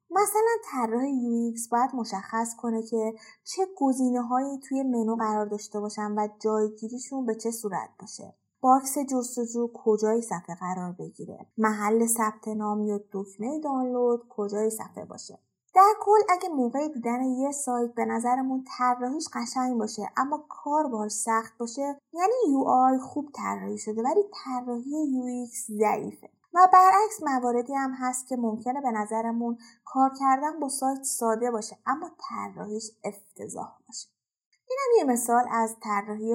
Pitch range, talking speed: 215-270 Hz, 140 wpm